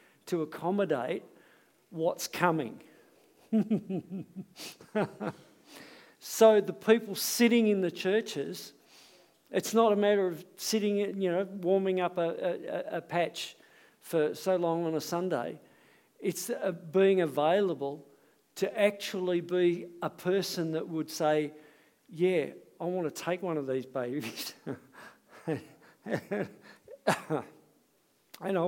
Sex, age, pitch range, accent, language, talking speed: male, 50-69, 170-205 Hz, Australian, English, 105 wpm